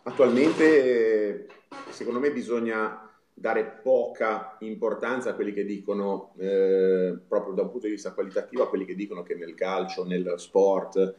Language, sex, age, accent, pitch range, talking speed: Italian, male, 30-49, native, 95-125 Hz, 155 wpm